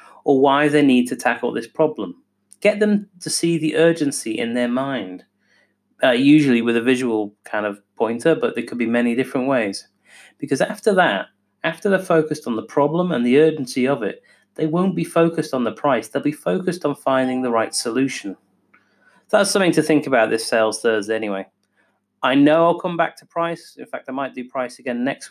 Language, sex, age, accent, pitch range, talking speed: English, male, 30-49, British, 120-165 Hz, 200 wpm